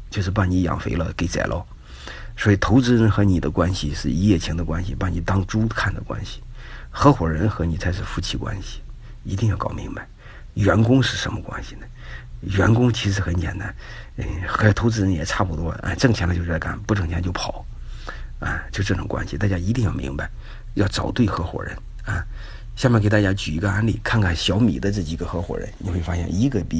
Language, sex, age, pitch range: Chinese, male, 50-69, 85-105 Hz